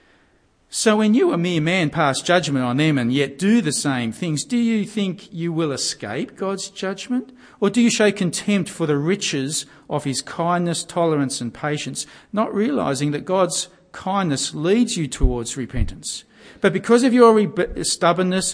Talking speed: 170 wpm